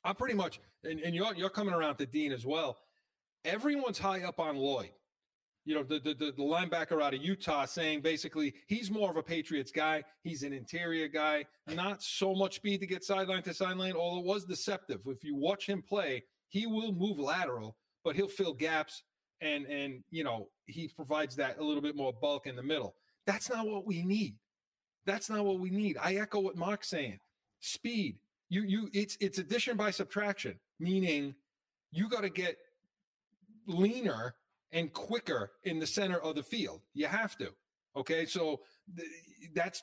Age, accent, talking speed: 30-49, American, 190 wpm